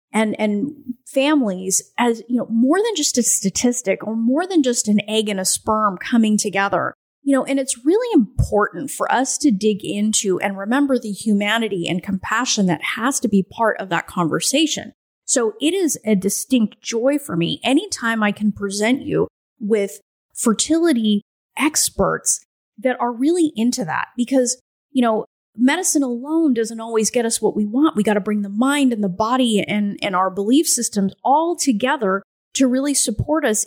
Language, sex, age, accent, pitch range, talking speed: English, female, 30-49, American, 205-275 Hz, 180 wpm